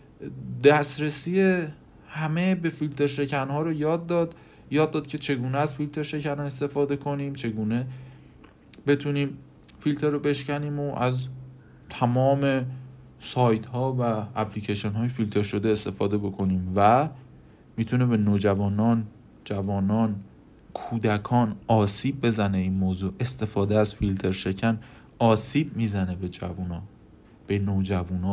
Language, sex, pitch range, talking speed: Persian, male, 105-145 Hz, 115 wpm